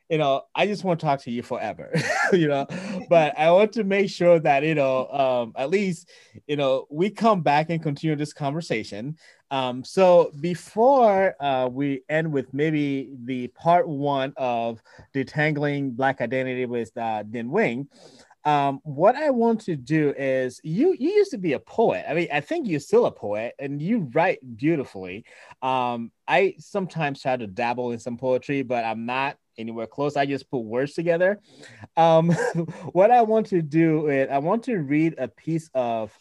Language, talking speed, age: English, 185 wpm, 30-49